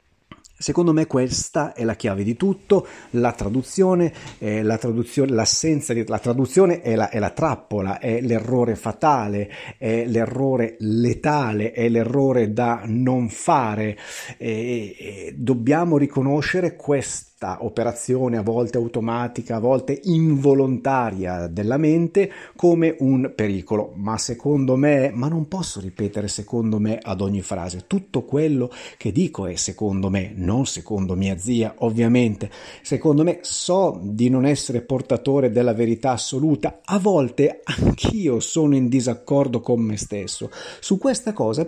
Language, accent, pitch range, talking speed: Italian, native, 110-150 Hz, 135 wpm